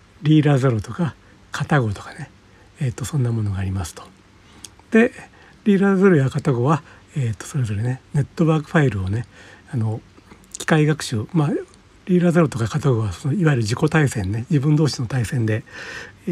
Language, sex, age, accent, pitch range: Japanese, male, 60-79, native, 105-150 Hz